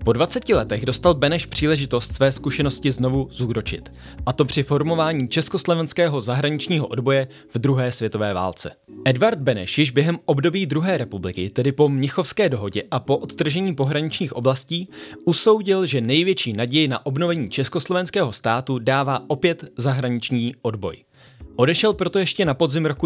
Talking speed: 145 wpm